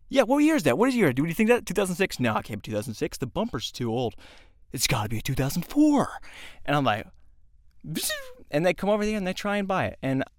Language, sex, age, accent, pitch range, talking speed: English, male, 20-39, American, 120-175 Hz, 255 wpm